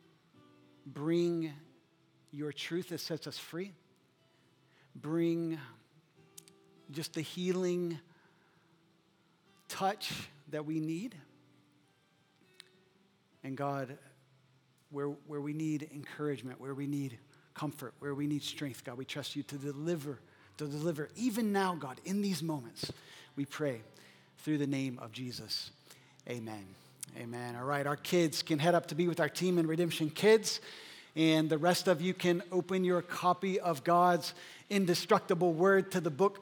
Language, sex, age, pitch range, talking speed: English, male, 50-69, 145-190 Hz, 140 wpm